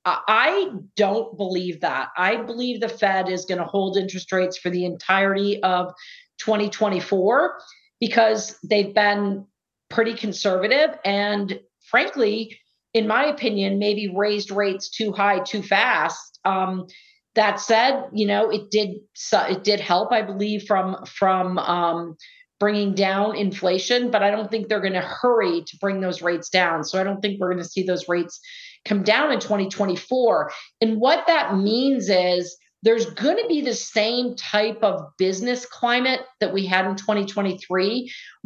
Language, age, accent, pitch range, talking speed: English, 40-59, American, 190-225 Hz, 160 wpm